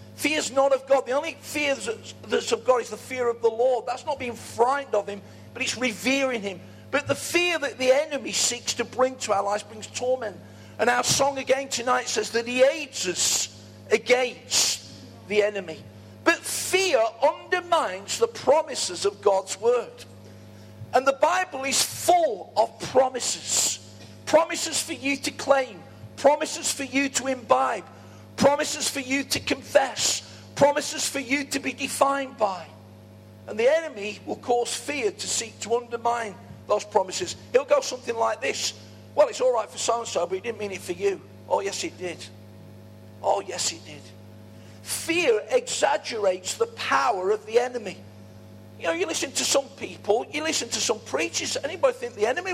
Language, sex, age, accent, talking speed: English, male, 50-69, British, 175 wpm